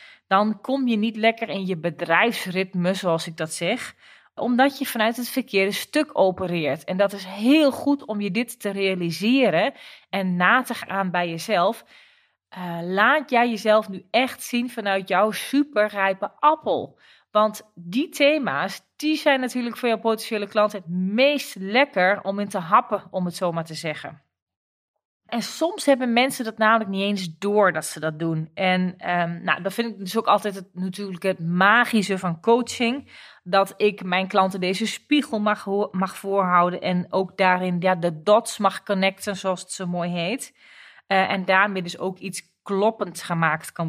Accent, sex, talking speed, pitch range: Dutch, female, 175 wpm, 185-235 Hz